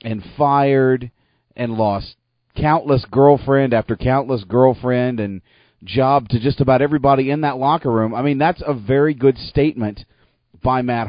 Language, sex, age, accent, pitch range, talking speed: English, male, 40-59, American, 115-140 Hz, 150 wpm